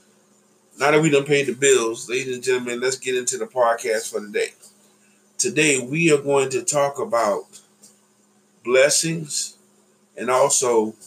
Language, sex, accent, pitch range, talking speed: English, male, American, 125-195 Hz, 145 wpm